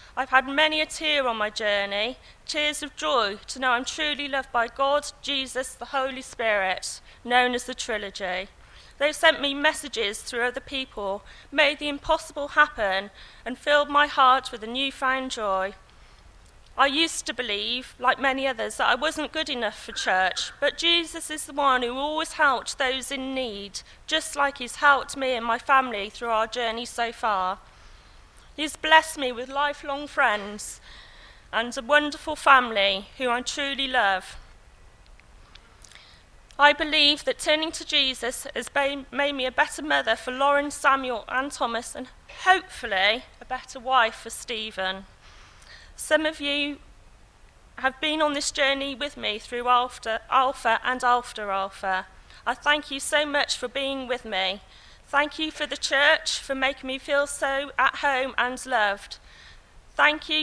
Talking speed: 160 wpm